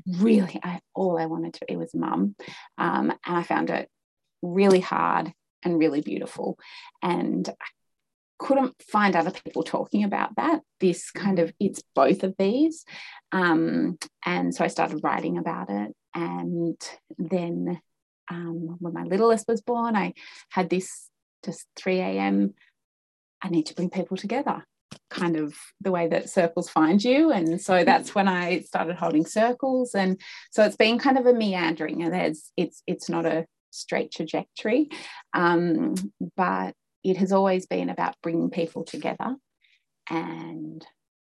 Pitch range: 160-195 Hz